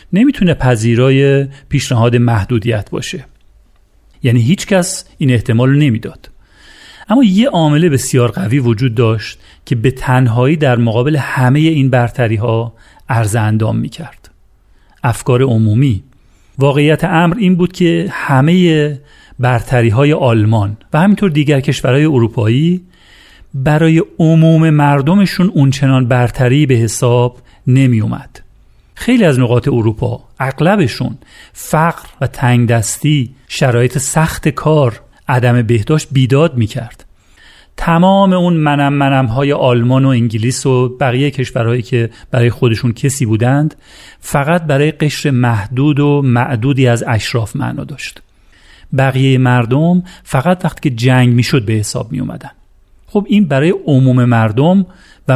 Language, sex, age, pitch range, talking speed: Persian, male, 40-59, 120-155 Hz, 120 wpm